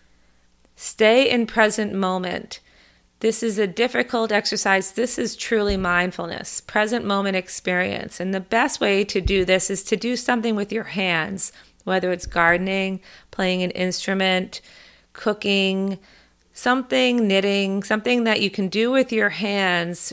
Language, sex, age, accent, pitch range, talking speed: English, female, 30-49, American, 180-210 Hz, 140 wpm